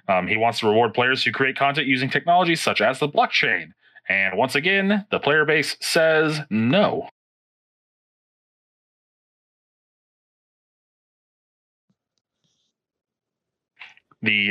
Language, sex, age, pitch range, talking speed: English, male, 30-49, 125-185 Hz, 100 wpm